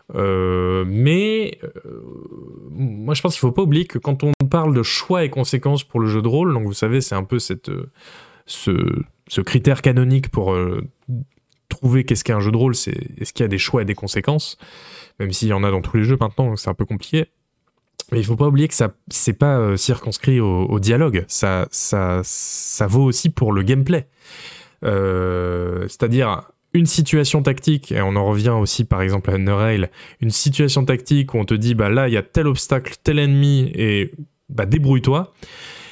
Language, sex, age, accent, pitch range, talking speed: French, male, 10-29, French, 105-140 Hz, 215 wpm